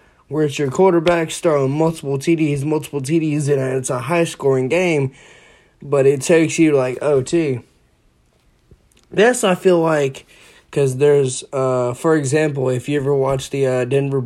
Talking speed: 155 wpm